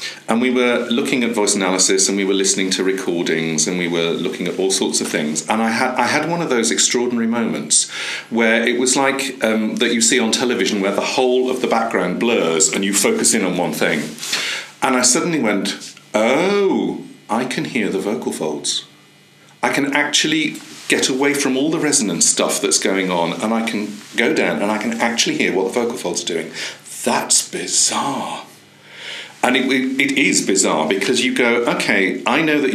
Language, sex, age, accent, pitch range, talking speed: English, male, 40-59, British, 95-130 Hz, 200 wpm